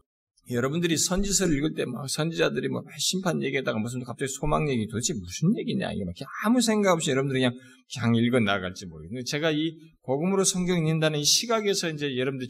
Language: Korean